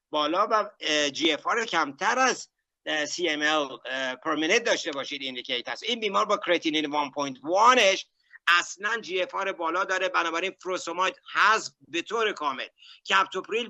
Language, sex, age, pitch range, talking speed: Persian, male, 60-79, 150-200 Hz, 115 wpm